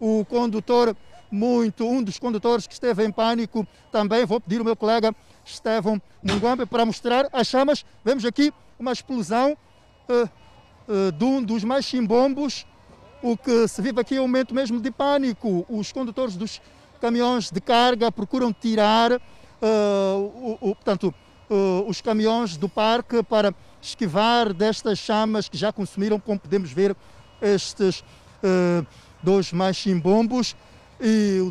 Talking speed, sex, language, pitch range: 130 wpm, male, Portuguese, 195-235 Hz